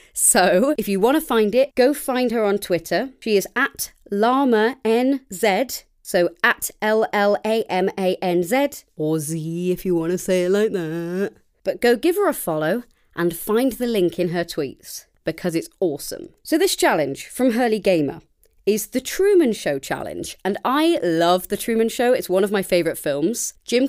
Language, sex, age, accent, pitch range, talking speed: English, female, 30-49, British, 180-245 Hz, 190 wpm